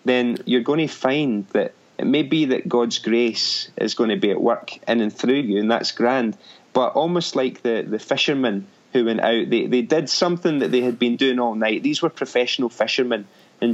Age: 30-49